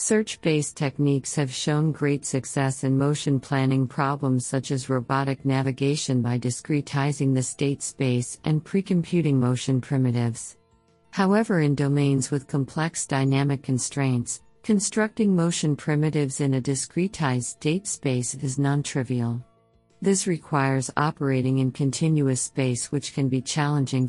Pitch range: 130-150 Hz